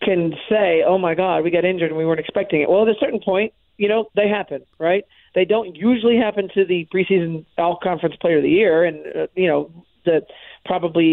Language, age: English, 50-69